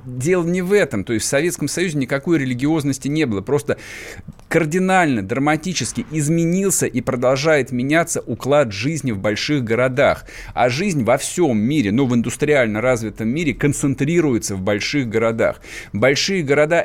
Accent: native